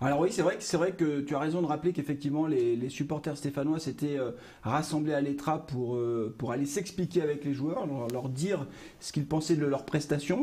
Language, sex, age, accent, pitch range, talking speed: French, male, 40-59, French, 135-170 Hz, 230 wpm